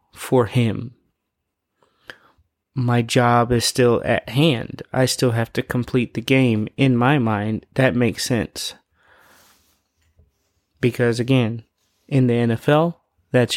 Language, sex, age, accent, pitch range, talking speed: English, male, 30-49, American, 110-125 Hz, 120 wpm